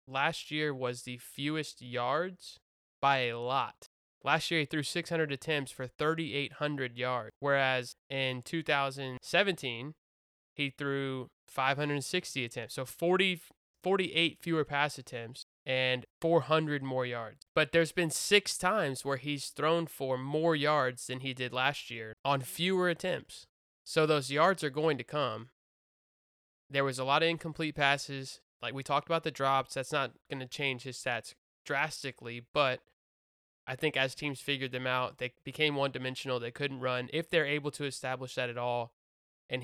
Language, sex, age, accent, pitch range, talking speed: English, male, 20-39, American, 125-155 Hz, 160 wpm